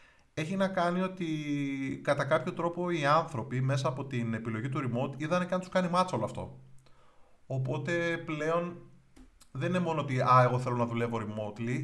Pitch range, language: 120-160 Hz, Greek